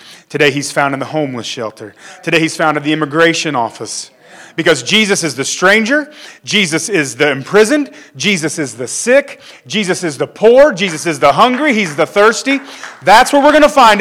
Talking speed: 190 wpm